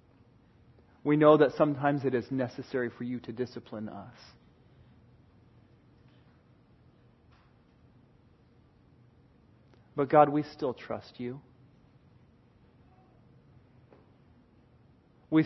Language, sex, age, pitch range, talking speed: English, male, 40-59, 120-140 Hz, 75 wpm